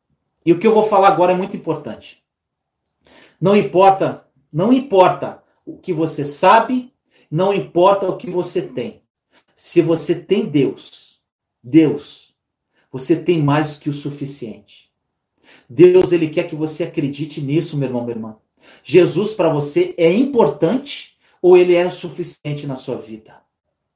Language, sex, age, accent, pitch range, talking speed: Portuguese, male, 40-59, Brazilian, 150-195 Hz, 150 wpm